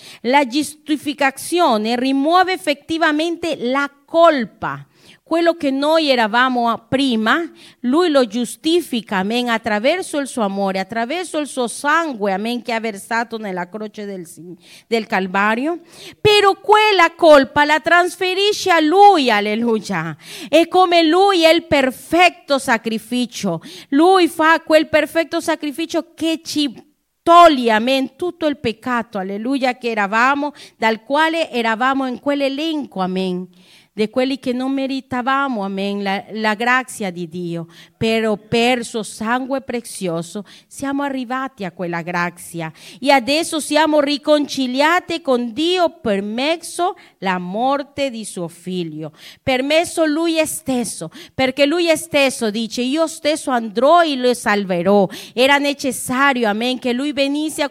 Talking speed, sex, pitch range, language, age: 125 wpm, female, 220-315 Hz, Italian, 40-59